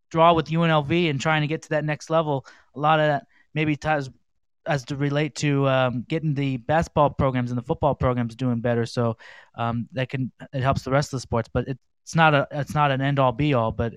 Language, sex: English, male